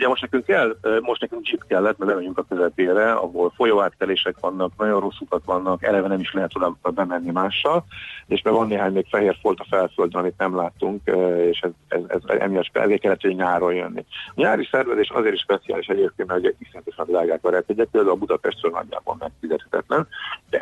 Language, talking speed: Hungarian, 190 wpm